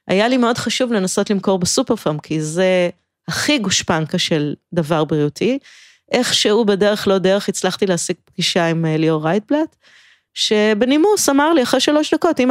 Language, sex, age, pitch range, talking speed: Hebrew, female, 30-49, 185-245 Hz, 155 wpm